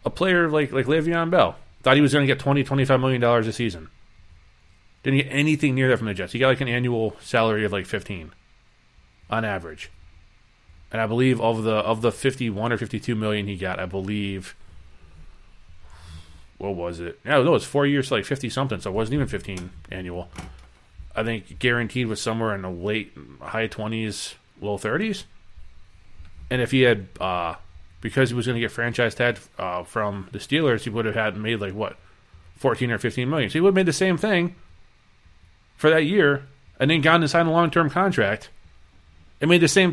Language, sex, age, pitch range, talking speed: English, male, 30-49, 90-135 Hz, 205 wpm